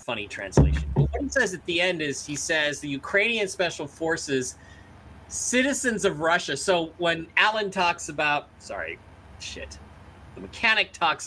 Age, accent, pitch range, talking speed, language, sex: 30-49, American, 135-200 Hz, 150 wpm, English, male